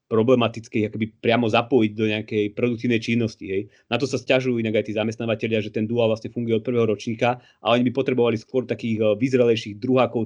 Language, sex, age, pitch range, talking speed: Slovak, male, 30-49, 105-125 Hz, 185 wpm